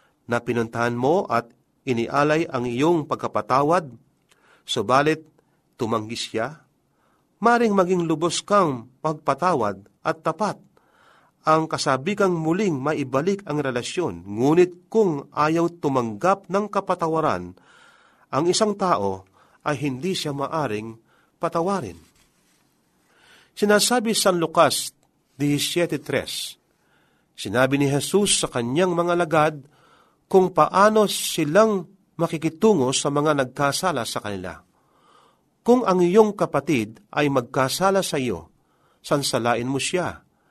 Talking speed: 100 wpm